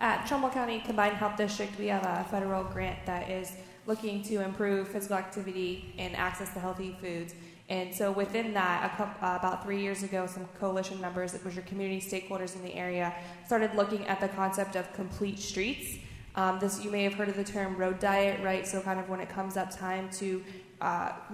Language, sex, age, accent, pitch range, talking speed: English, female, 20-39, American, 190-205 Hz, 205 wpm